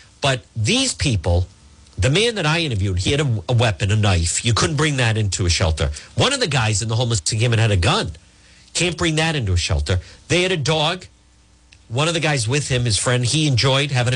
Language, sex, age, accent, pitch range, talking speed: English, male, 50-69, American, 100-165 Hz, 230 wpm